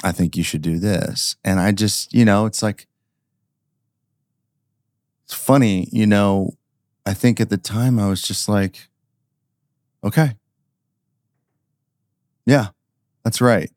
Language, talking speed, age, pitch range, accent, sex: English, 130 wpm, 30-49, 95-130 Hz, American, male